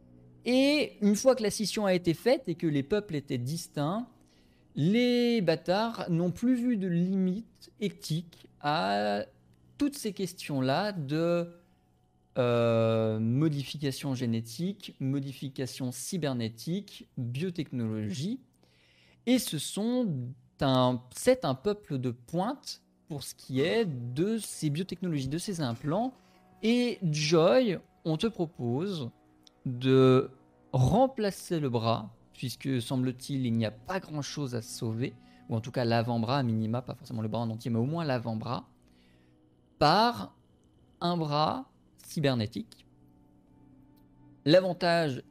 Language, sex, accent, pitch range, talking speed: French, male, French, 115-175 Hz, 125 wpm